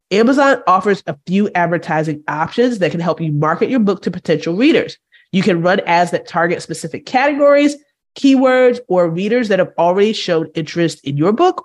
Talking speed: 180 wpm